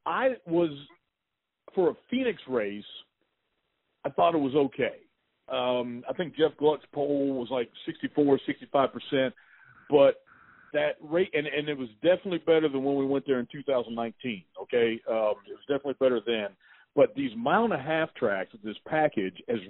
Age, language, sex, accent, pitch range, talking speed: 50-69, English, male, American, 140-200 Hz, 160 wpm